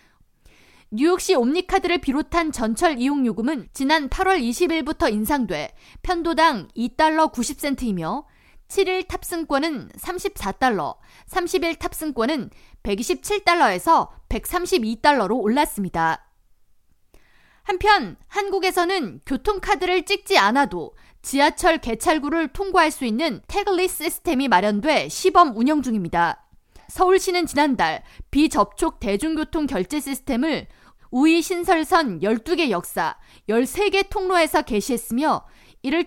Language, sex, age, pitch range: Korean, female, 20-39, 250-355 Hz